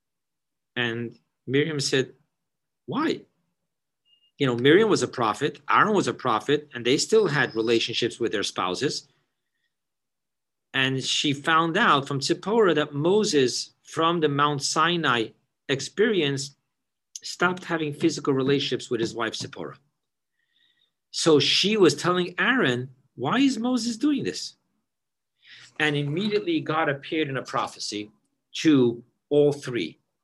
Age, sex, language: 50-69, male, English